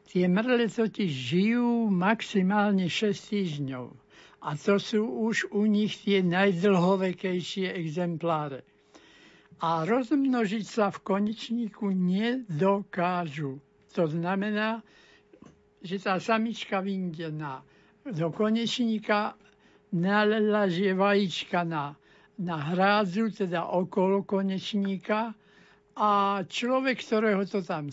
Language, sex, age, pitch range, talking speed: Slovak, male, 60-79, 180-220 Hz, 90 wpm